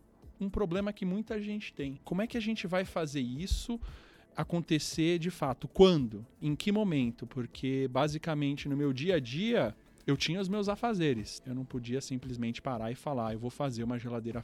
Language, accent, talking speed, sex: Portuguese, Brazilian, 185 wpm, male